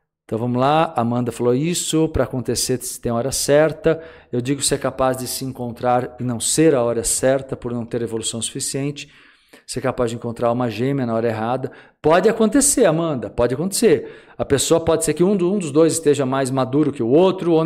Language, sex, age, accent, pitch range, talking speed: Portuguese, male, 50-69, Brazilian, 135-185 Hz, 210 wpm